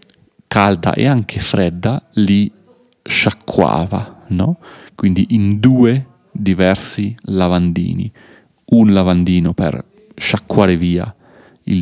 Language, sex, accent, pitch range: Italian, male, native, 95-120 Hz